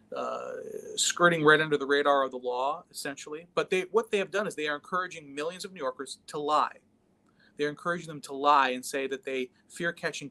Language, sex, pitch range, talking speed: English, male, 130-165 Hz, 220 wpm